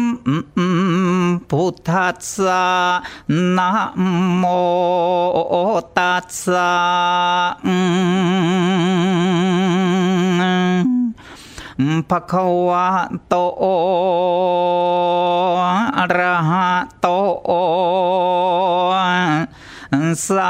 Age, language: 40-59, Thai